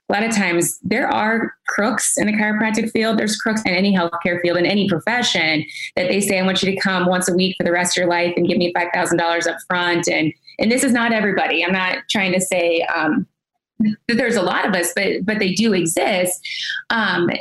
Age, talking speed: 20-39, 240 wpm